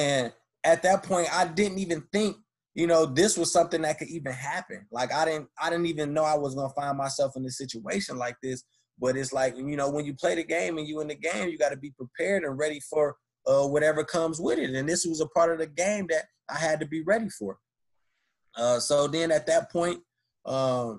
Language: English